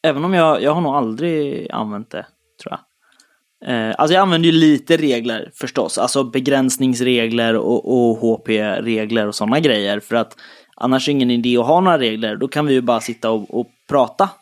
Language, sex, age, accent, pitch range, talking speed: Swedish, male, 20-39, native, 120-155 Hz, 190 wpm